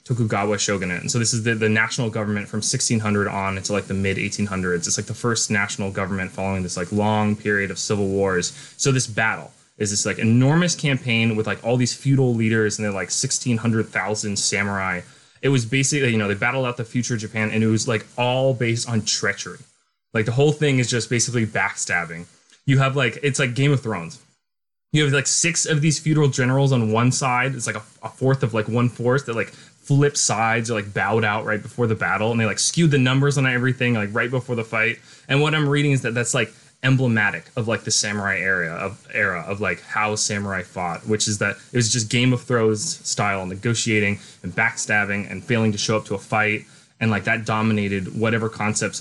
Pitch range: 105-130 Hz